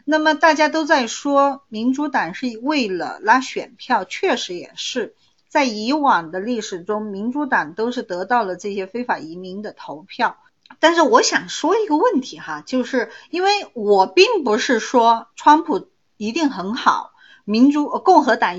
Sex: female